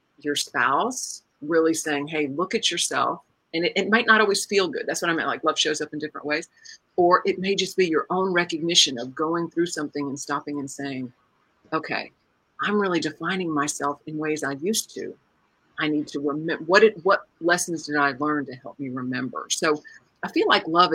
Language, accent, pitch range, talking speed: English, American, 155-210 Hz, 205 wpm